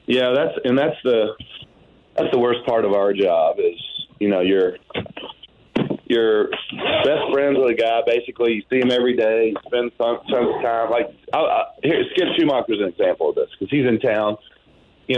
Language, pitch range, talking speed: English, 110-140 Hz, 195 wpm